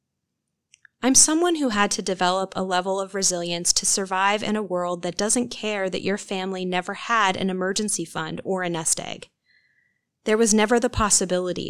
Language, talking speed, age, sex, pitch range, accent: English, 180 wpm, 20-39, female, 180-225 Hz, American